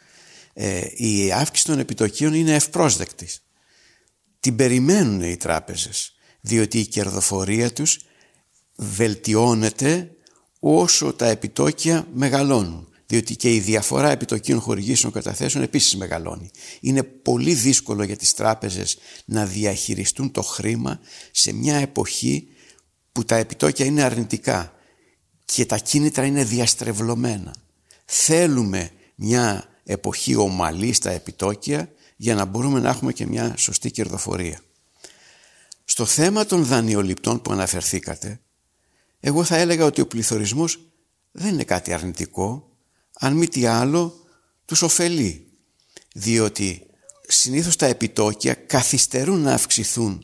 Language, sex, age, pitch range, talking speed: Greek, male, 60-79, 100-145 Hz, 115 wpm